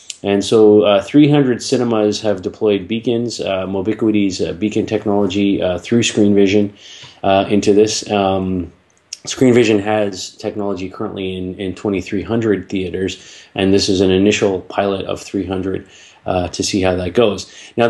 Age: 30-49